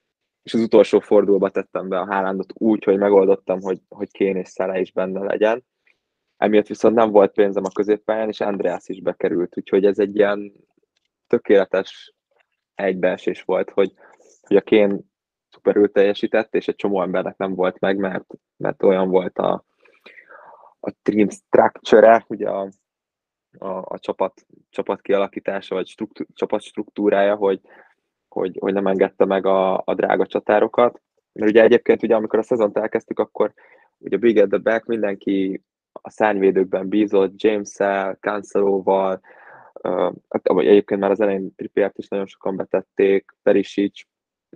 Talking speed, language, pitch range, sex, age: 150 wpm, Hungarian, 95-105 Hz, male, 20-39